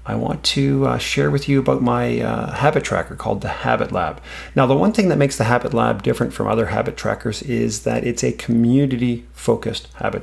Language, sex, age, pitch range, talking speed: English, male, 40-59, 100-130 Hz, 215 wpm